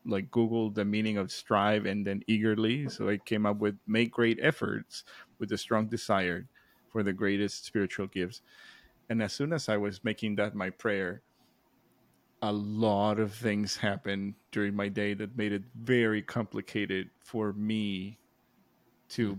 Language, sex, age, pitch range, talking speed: English, male, 20-39, 105-115 Hz, 160 wpm